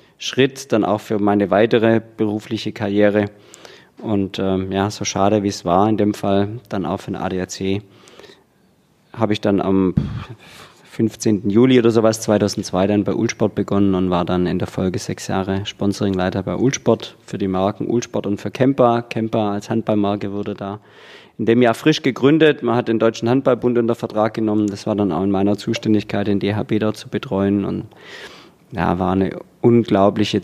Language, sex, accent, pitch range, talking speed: German, male, German, 95-115 Hz, 175 wpm